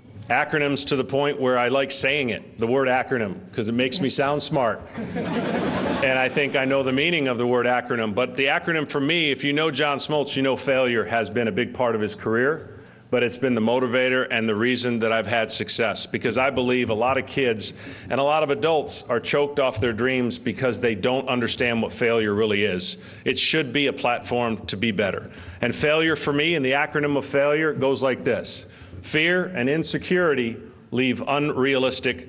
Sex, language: male, English